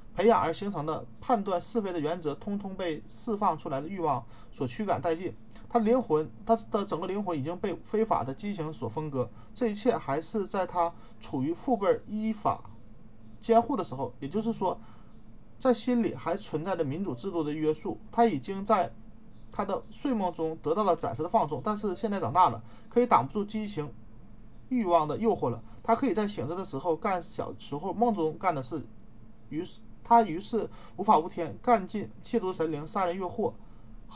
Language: Chinese